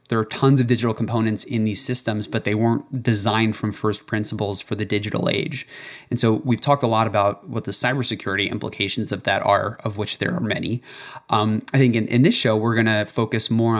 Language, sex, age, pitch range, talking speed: English, male, 20-39, 110-125 Hz, 220 wpm